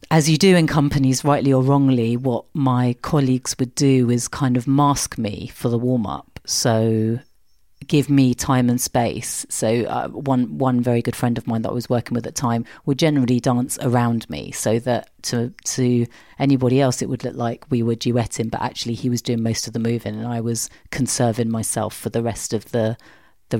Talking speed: 210 wpm